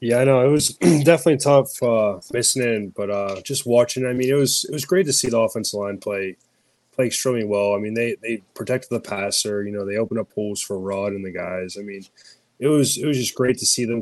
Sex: male